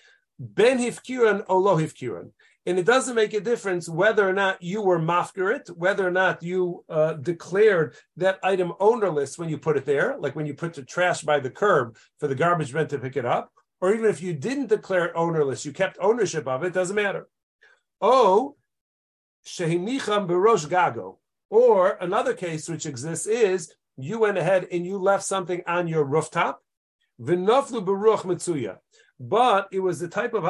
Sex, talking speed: male, 155 wpm